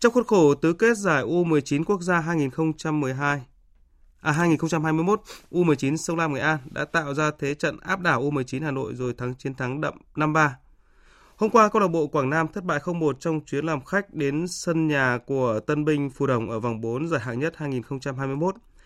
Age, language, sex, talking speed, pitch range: 20-39, Vietnamese, male, 195 wpm, 135-165 Hz